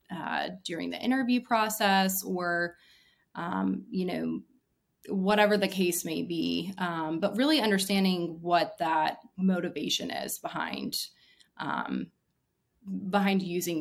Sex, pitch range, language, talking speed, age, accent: female, 175-210 Hz, English, 115 wpm, 20-39, American